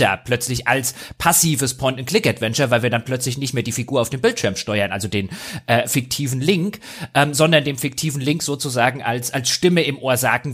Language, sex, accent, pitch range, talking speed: German, male, German, 120-150 Hz, 190 wpm